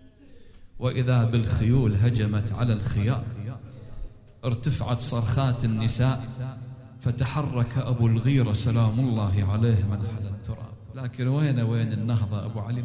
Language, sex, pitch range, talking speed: Arabic, male, 105-135 Hz, 105 wpm